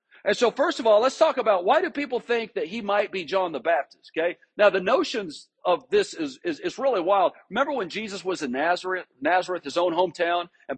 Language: English